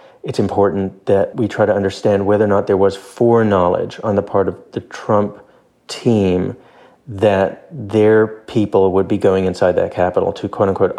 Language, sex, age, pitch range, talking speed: English, male, 30-49, 95-110 Hz, 170 wpm